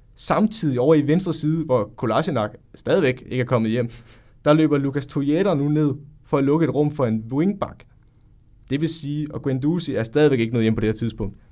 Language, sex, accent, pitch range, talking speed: Danish, male, native, 115-150 Hz, 210 wpm